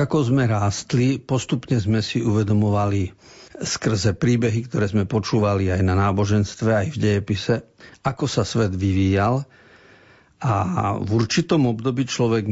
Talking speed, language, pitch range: 130 wpm, Slovak, 100-125 Hz